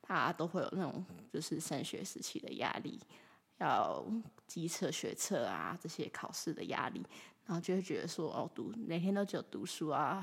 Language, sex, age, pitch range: Chinese, female, 20-39, 180-225 Hz